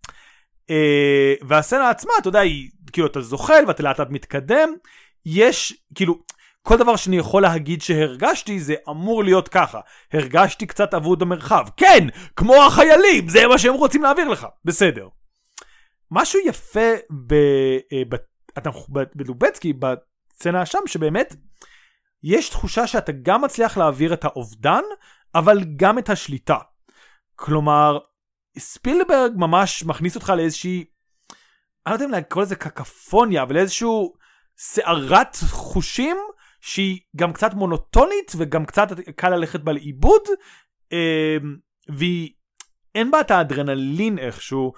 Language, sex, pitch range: Hebrew, male, 150-220 Hz